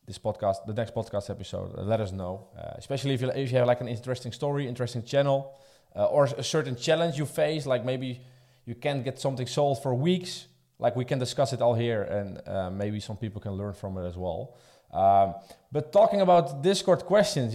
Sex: male